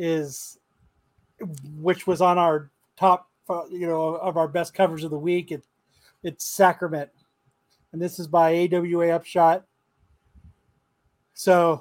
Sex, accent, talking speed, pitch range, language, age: male, American, 125 wpm, 155-190 Hz, English, 30-49